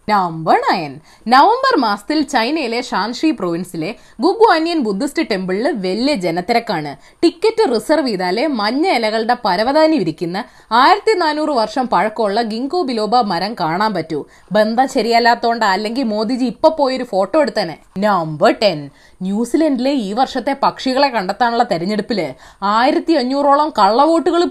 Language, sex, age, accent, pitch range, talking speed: Malayalam, female, 20-39, native, 205-305 Hz, 105 wpm